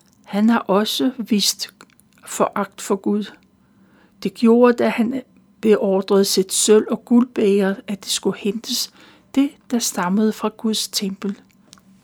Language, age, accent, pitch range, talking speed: Danish, 60-79, native, 200-240 Hz, 130 wpm